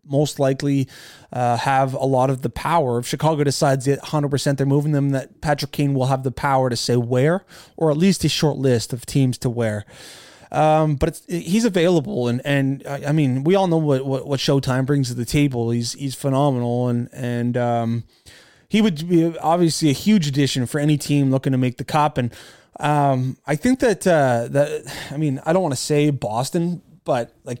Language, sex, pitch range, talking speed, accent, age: English, male, 125-155 Hz, 215 wpm, American, 20-39